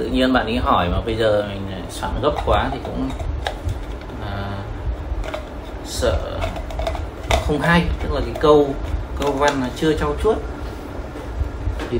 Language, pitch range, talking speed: English, 90-125 Hz, 145 wpm